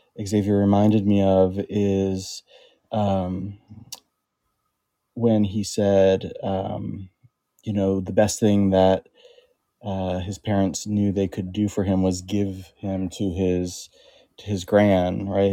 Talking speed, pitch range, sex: 130 wpm, 95-110 Hz, male